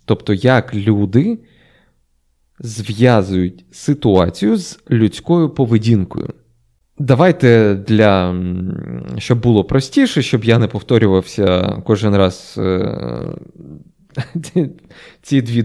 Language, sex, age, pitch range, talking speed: Ukrainian, male, 20-39, 95-130 Hz, 90 wpm